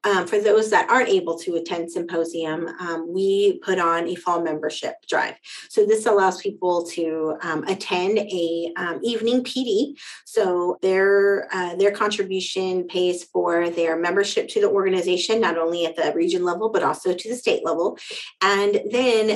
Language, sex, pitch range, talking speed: English, female, 170-215 Hz, 165 wpm